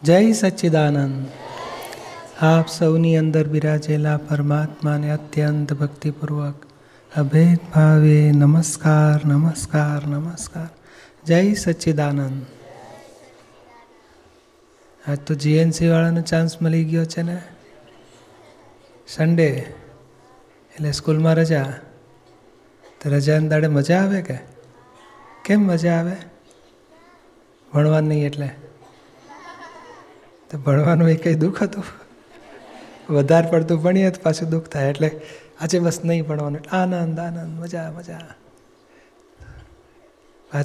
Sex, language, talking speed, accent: male, Gujarati, 85 wpm, native